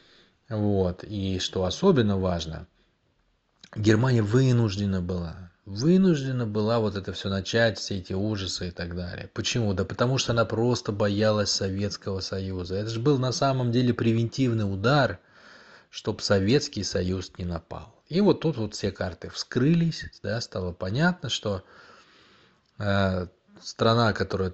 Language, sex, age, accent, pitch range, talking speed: Russian, male, 20-39, native, 95-120 Hz, 135 wpm